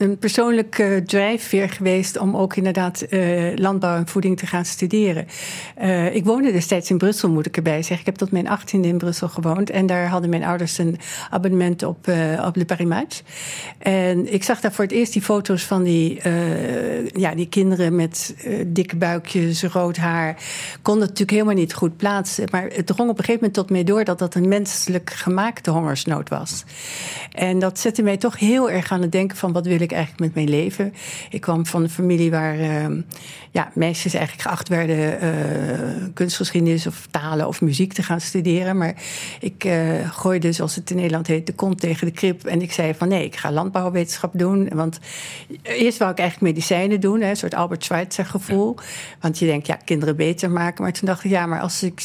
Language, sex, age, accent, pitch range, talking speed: Dutch, female, 60-79, Dutch, 165-195 Hz, 205 wpm